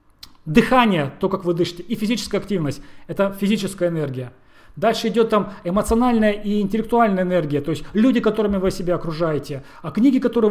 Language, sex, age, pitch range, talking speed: Russian, male, 30-49, 155-210 Hz, 160 wpm